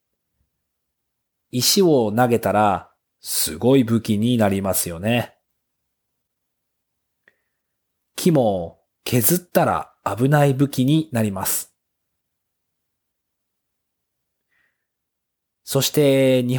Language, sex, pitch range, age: Japanese, male, 95-135 Hz, 40-59